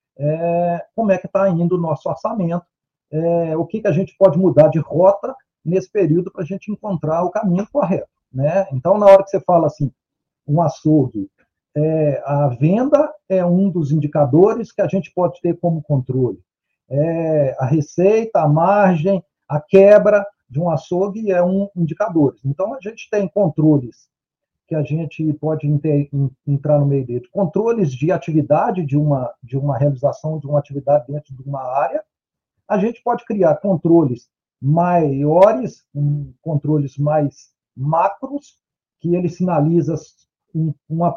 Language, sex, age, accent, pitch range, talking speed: Portuguese, male, 50-69, Brazilian, 150-195 Hz, 145 wpm